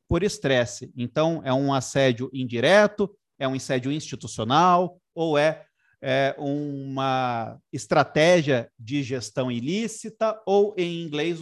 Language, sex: Portuguese, male